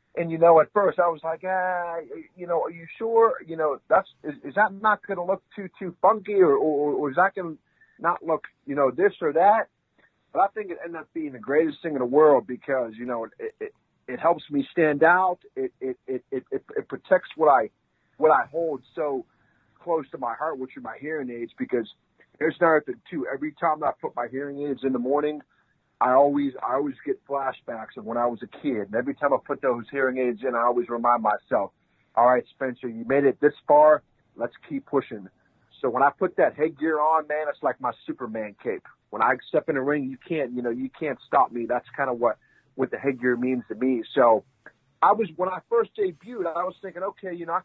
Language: English